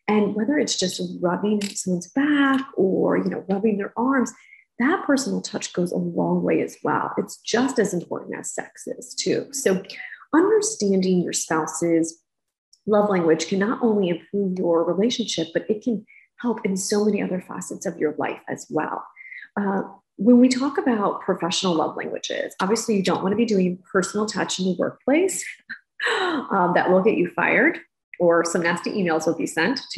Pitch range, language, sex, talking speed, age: 175-230 Hz, English, female, 180 wpm, 30-49